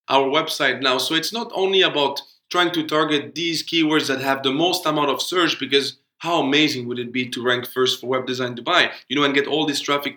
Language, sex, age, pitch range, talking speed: English, male, 20-39, 130-165 Hz, 235 wpm